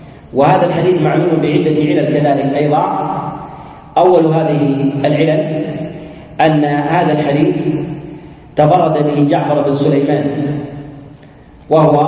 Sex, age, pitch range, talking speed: male, 40-59, 145-160 Hz, 95 wpm